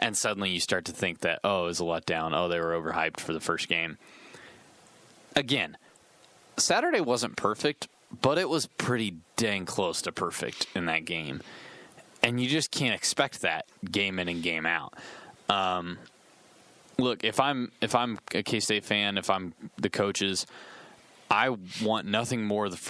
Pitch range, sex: 90-105 Hz, male